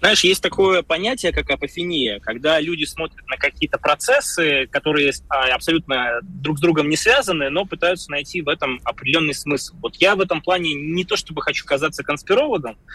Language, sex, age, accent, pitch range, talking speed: Russian, male, 20-39, native, 140-175 Hz, 170 wpm